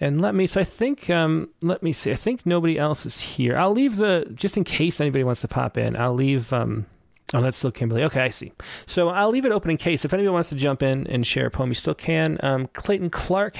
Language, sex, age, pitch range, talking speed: English, male, 30-49, 125-165 Hz, 265 wpm